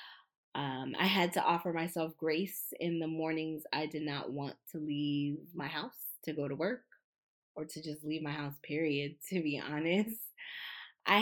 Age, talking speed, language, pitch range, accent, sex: 20-39, 175 wpm, English, 150-185 Hz, American, female